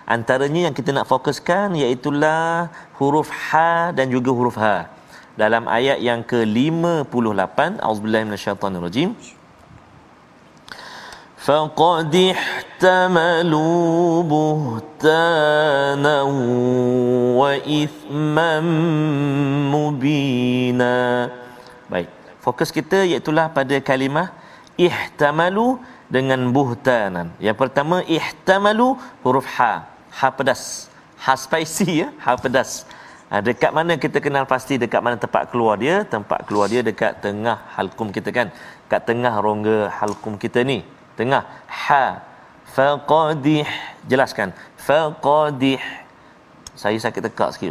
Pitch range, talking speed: 125-160 Hz, 100 wpm